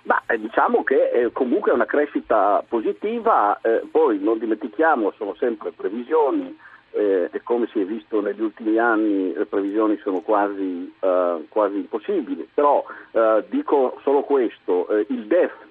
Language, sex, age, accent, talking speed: Italian, male, 50-69, native, 155 wpm